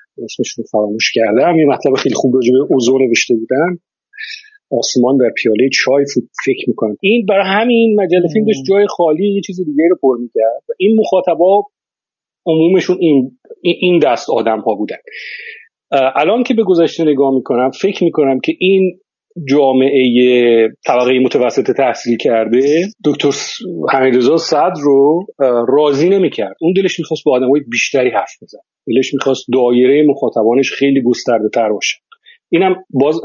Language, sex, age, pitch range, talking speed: Persian, male, 40-59, 125-190 Hz, 135 wpm